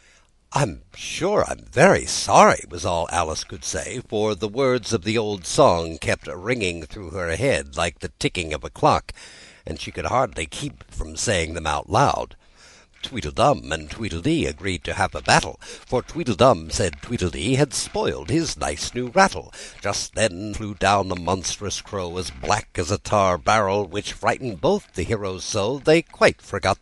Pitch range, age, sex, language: 90-145 Hz, 60-79, male, Korean